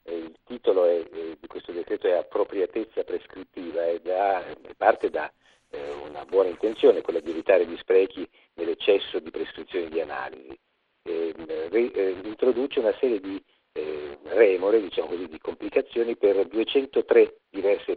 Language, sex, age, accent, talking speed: Italian, male, 50-69, native, 140 wpm